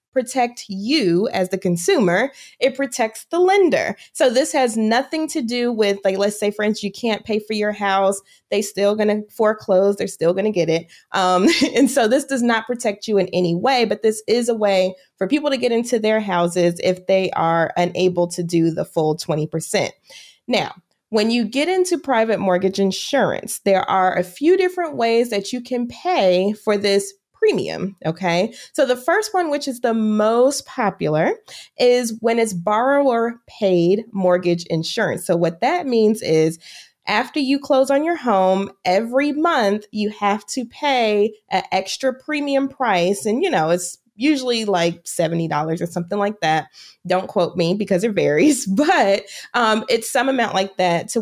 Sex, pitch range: female, 185-245 Hz